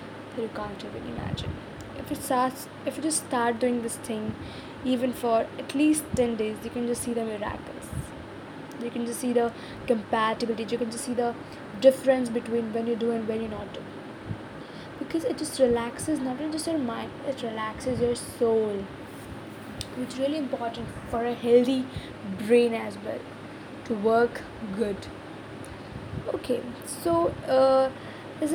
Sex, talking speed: female, 165 wpm